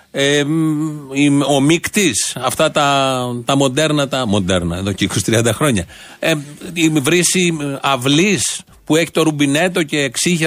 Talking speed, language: 115 wpm, Greek